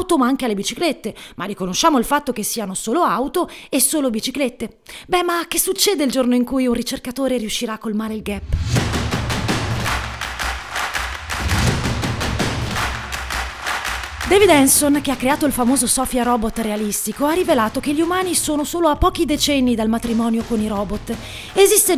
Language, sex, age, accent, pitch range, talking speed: Italian, female, 30-49, native, 235-315 Hz, 155 wpm